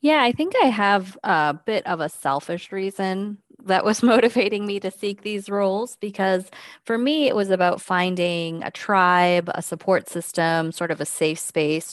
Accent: American